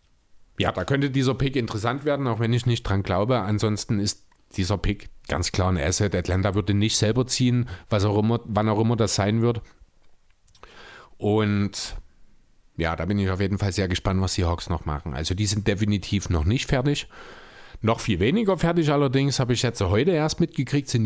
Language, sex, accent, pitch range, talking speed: German, male, German, 100-130 Hz, 190 wpm